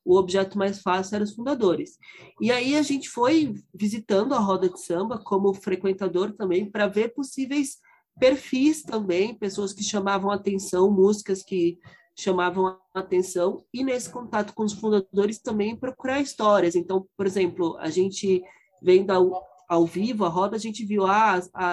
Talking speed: 165 wpm